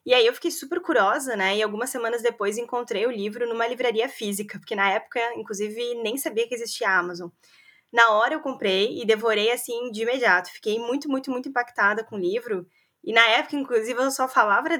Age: 20-39